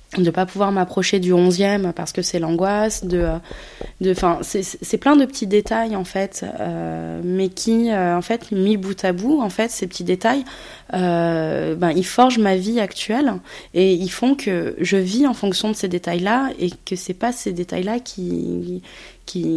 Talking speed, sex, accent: 200 wpm, female, French